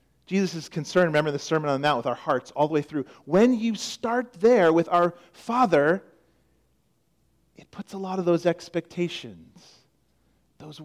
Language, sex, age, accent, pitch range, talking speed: English, male, 40-59, American, 145-185 Hz, 170 wpm